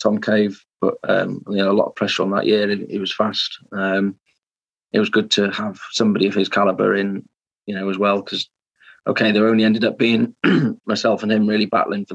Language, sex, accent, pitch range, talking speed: English, male, British, 95-105 Hz, 215 wpm